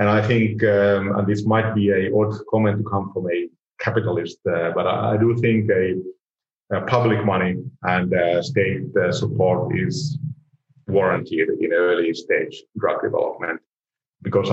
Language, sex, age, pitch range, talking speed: English, male, 30-49, 95-115 Hz, 160 wpm